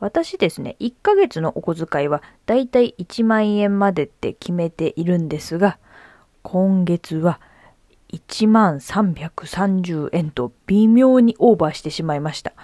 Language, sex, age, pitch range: Japanese, female, 20-39, 160-240 Hz